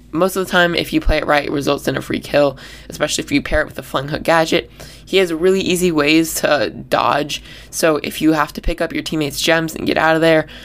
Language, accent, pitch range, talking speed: English, American, 150-180 Hz, 265 wpm